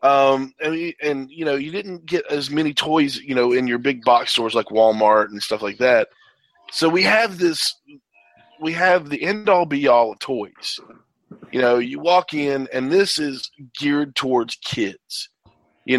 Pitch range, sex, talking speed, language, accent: 130-180 Hz, male, 190 wpm, English, American